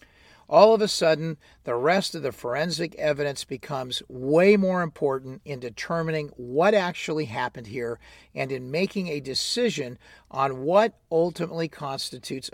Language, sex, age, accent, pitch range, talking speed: English, male, 50-69, American, 130-195 Hz, 140 wpm